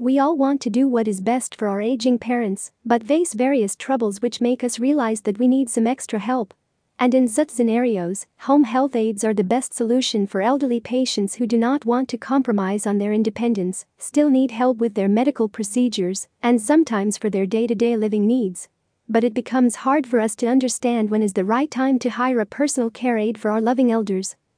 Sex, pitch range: female, 215-255 Hz